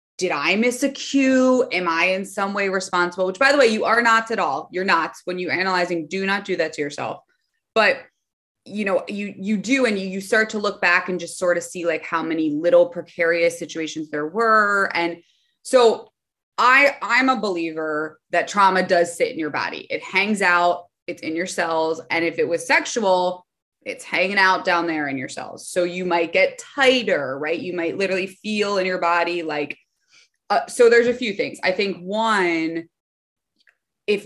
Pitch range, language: 170-235 Hz, English